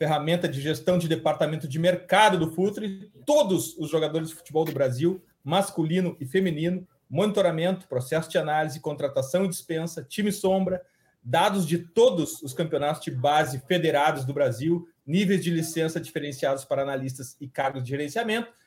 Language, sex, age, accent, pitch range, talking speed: Portuguese, male, 40-59, Brazilian, 145-185 Hz, 155 wpm